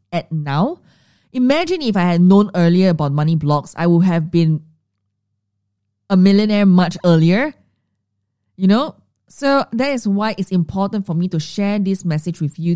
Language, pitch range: English, 145-190 Hz